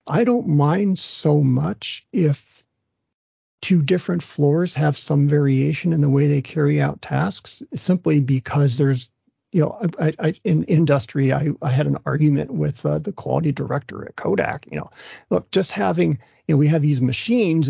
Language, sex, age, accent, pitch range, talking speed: English, male, 50-69, American, 140-165 Hz, 165 wpm